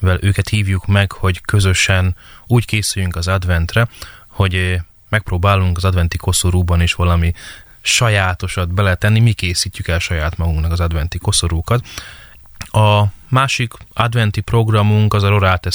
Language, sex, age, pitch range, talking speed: Hungarian, male, 20-39, 90-105 Hz, 130 wpm